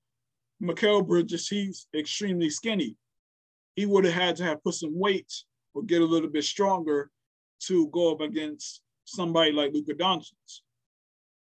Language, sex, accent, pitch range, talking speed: English, male, American, 140-180 Hz, 145 wpm